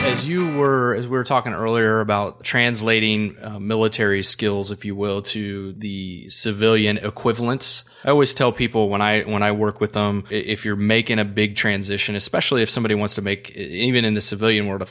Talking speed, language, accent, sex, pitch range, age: 195 wpm, English, American, male, 100-115 Hz, 30-49